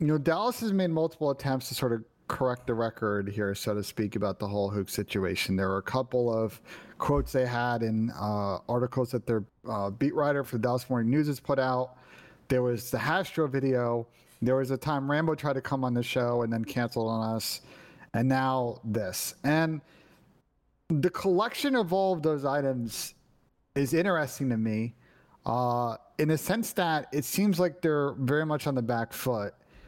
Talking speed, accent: 195 wpm, American